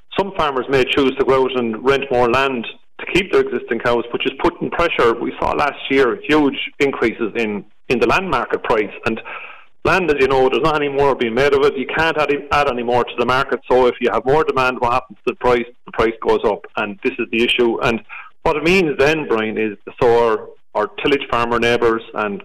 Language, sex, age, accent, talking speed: English, male, 40-59, Irish, 235 wpm